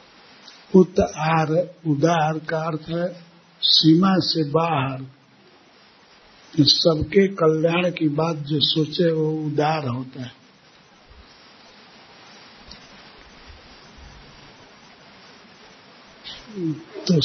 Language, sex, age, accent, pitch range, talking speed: Hindi, male, 50-69, native, 150-175 Hz, 65 wpm